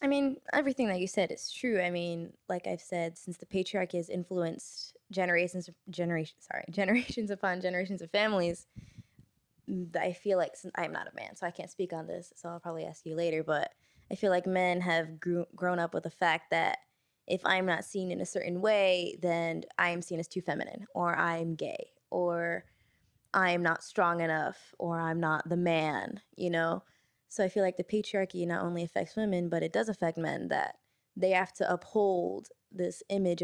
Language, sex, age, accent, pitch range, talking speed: English, female, 20-39, American, 165-190 Hz, 195 wpm